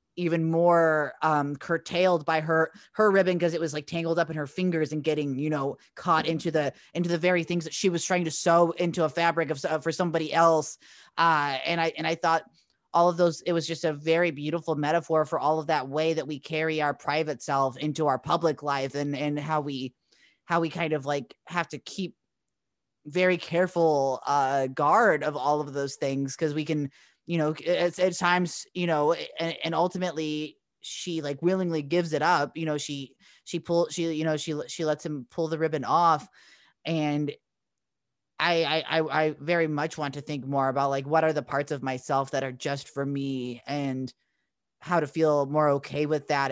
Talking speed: 205 wpm